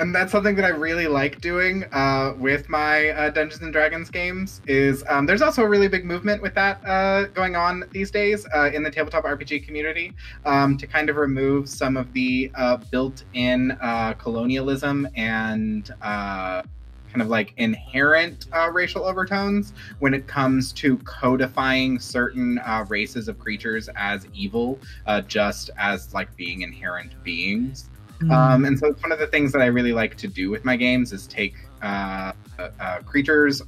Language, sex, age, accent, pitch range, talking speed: English, male, 20-39, American, 105-150 Hz, 175 wpm